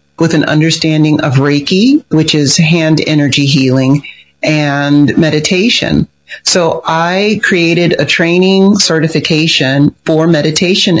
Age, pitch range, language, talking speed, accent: 40-59, 145-170 Hz, English, 110 wpm, American